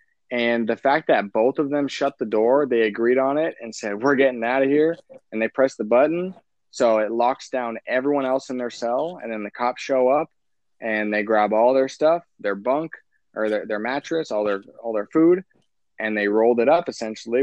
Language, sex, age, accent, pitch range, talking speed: English, male, 20-39, American, 105-125 Hz, 220 wpm